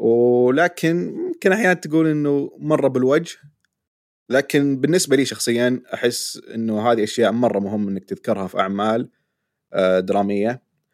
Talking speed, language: 120 wpm, Arabic